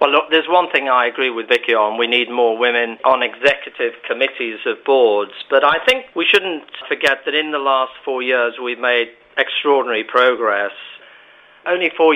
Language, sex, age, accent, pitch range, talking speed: English, male, 40-59, British, 125-155 Hz, 185 wpm